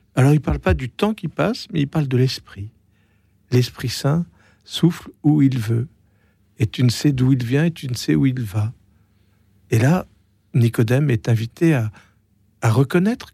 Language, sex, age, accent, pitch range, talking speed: French, male, 50-69, French, 110-145 Hz, 190 wpm